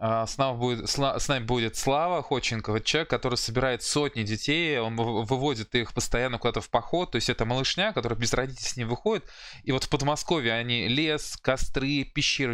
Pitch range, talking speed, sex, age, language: 120-145 Hz, 175 wpm, male, 20-39, Russian